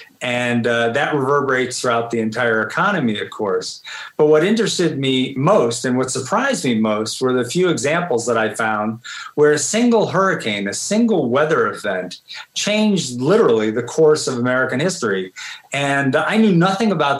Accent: American